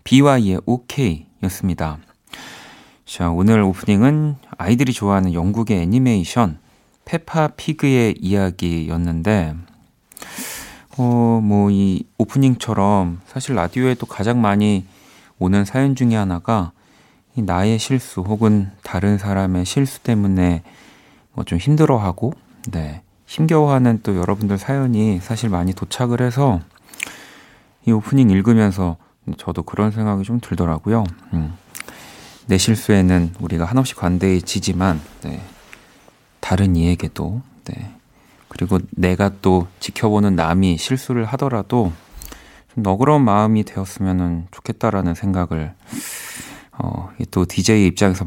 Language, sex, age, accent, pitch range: Korean, male, 40-59, native, 90-115 Hz